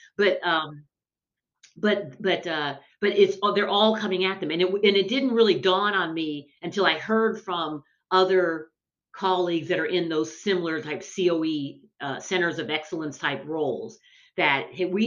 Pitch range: 155-190 Hz